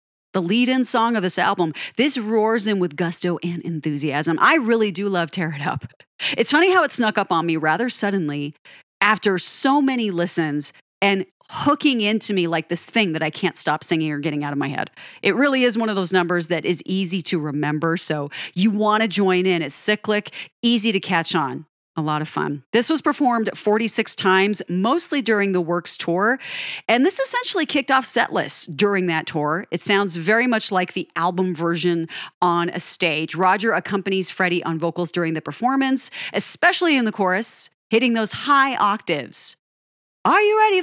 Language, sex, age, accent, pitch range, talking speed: English, female, 40-59, American, 170-235 Hz, 190 wpm